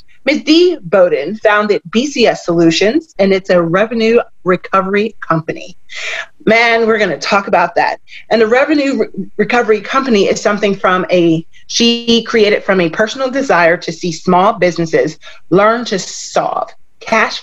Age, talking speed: 30-49, 150 wpm